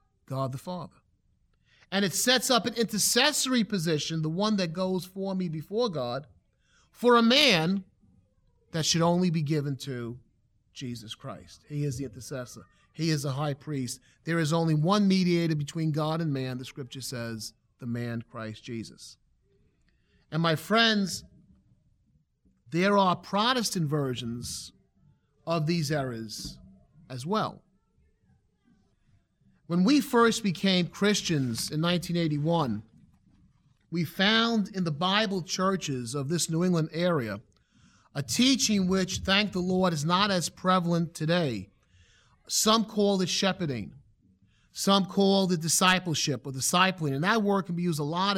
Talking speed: 140 wpm